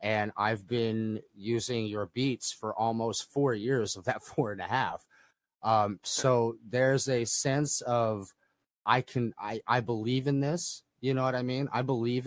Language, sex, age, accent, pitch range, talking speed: English, male, 30-49, American, 110-135 Hz, 175 wpm